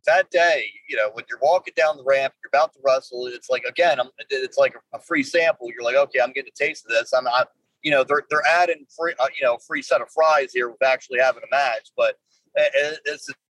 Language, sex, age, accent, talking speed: English, male, 30-49, American, 245 wpm